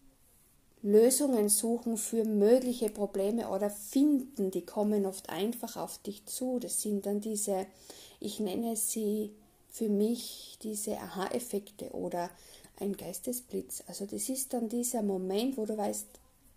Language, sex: German, female